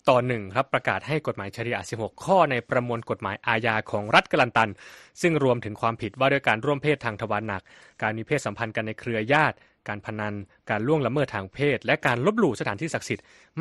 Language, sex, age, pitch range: Thai, male, 20-39, 110-145 Hz